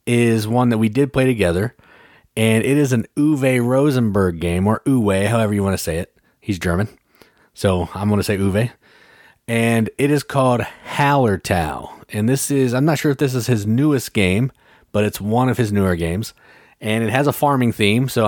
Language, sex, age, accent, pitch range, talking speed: English, male, 30-49, American, 95-120 Hz, 200 wpm